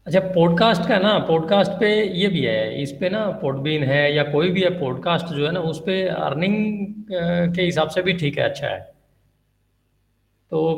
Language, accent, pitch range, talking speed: Hindi, native, 130-170 Hz, 190 wpm